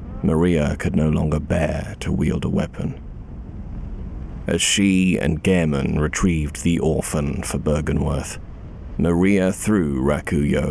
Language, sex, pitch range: English, male, 75-90 Hz